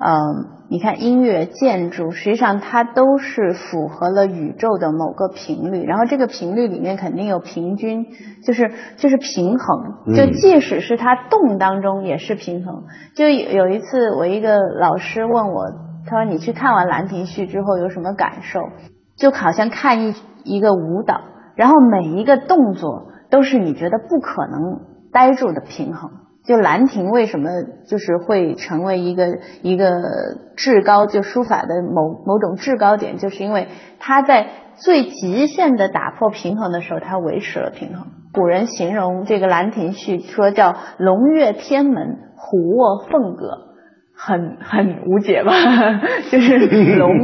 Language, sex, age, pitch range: Chinese, female, 20-39, 180-250 Hz